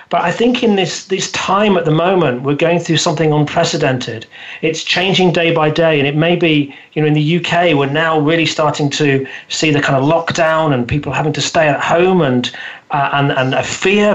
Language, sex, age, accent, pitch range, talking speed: English, male, 40-59, British, 145-175 Hz, 220 wpm